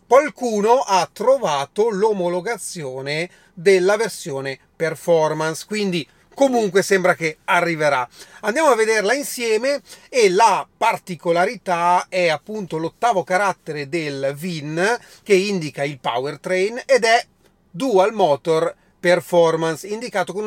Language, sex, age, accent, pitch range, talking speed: Italian, male, 30-49, native, 150-195 Hz, 105 wpm